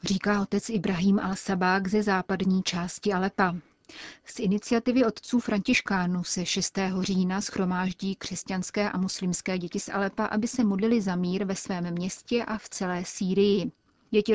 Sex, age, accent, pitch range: female, 30-49, native, 185-210 Hz